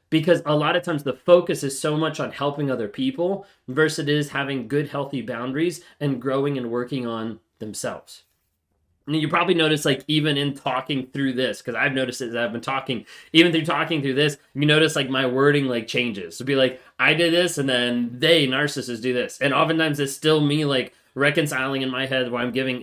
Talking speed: 215 wpm